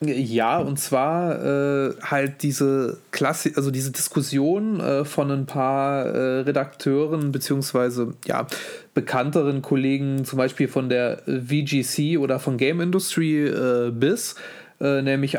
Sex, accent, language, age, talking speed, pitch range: male, German, German, 30-49, 130 wpm, 130-150 Hz